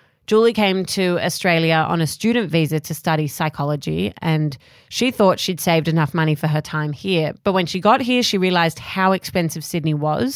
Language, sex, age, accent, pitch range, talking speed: English, female, 30-49, Australian, 160-205 Hz, 190 wpm